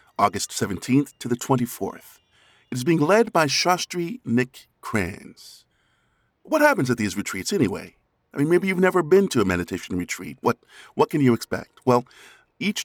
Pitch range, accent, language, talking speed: 105-145 Hz, American, English, 170 wpm